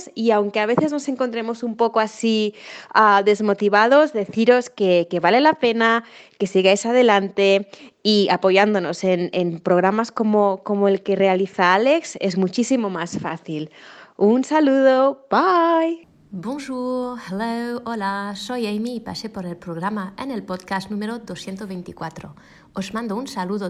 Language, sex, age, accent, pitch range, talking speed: Spanish, female, 20-39, Spanish, 195-240 Hz, 140 wpm